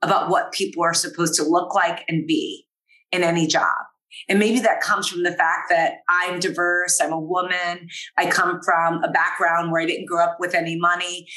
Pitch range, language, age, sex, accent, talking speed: 170-215 Hz, English, 30-49, female, American, 205 wpm